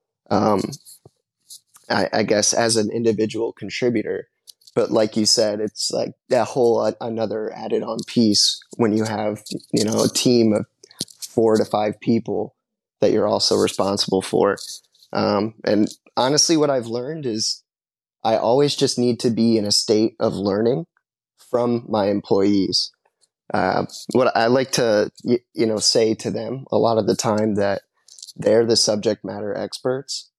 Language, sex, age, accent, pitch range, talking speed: English, male, 20-39, American, 105-120 Hz, 160 wpm